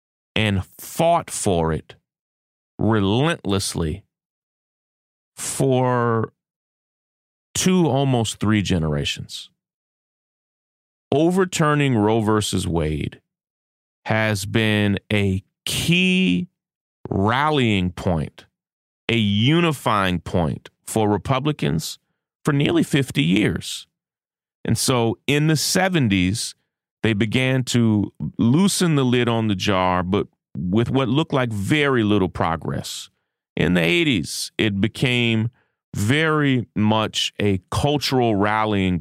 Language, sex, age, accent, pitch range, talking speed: English, male, 30-49, American, 95-130 Hz, 95 wpm